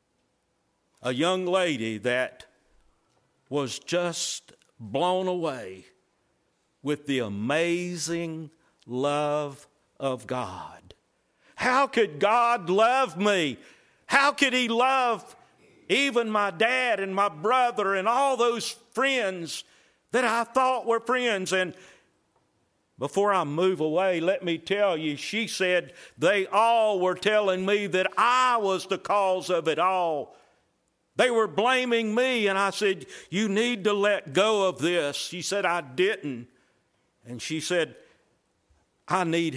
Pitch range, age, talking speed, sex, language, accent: 160-235 Hz, 60-79, 130 wpm, male, English, American